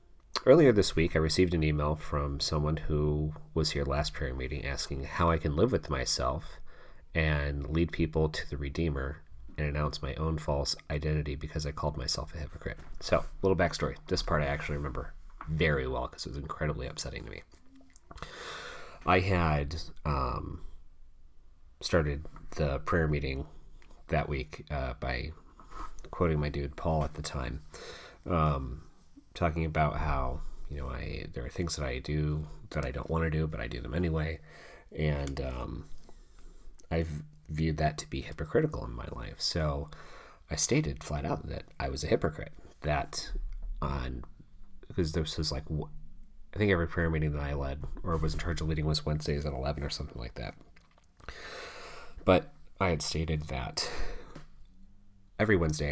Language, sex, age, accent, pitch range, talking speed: English, male, 30-49, American, 75-80 Hz, 165 wpm